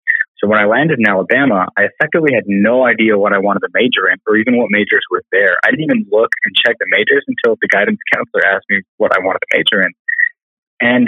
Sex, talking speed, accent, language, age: male, 240 wpm, American, English, 20-39